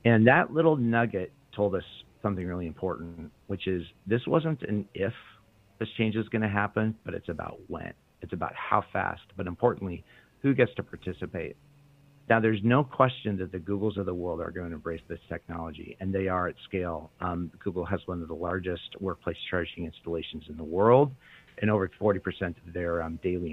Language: English